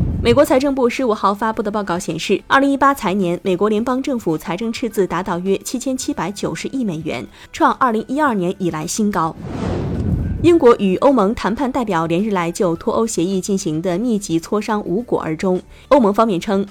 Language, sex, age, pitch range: Chinese, female, 20-39, 180-245 Hz